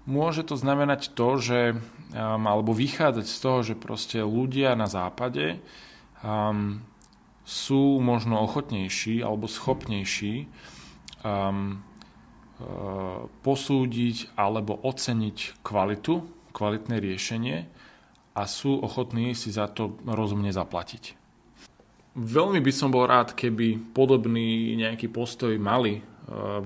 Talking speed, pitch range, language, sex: 105 wpm, 105-130 Hz, Slovak, male